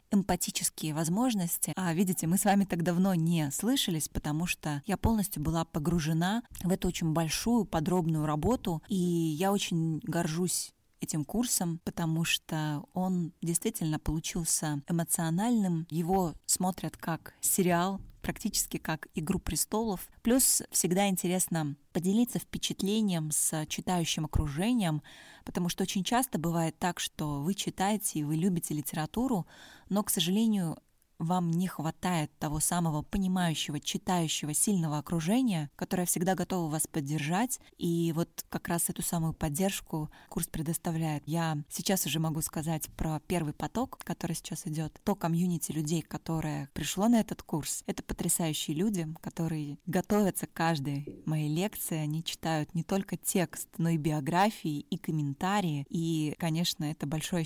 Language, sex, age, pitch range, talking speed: Russian, female, 20-39, 160-190 Hz, 140 wpm